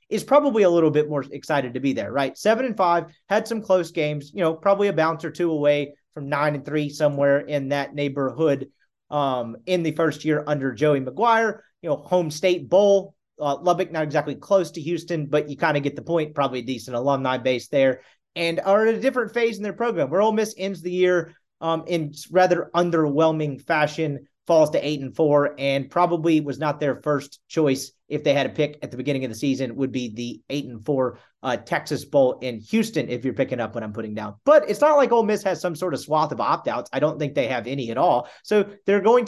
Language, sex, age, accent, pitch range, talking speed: English, male, 30-49, American, 140-175 Hz, 235 wpm